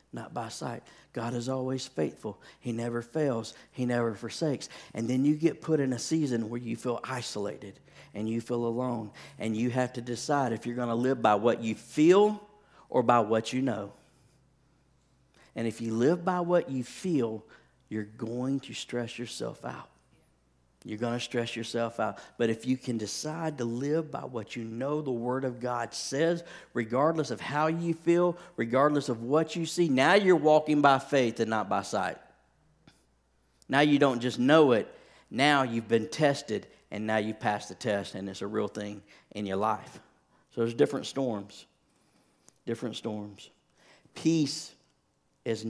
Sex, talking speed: male, 175 wpm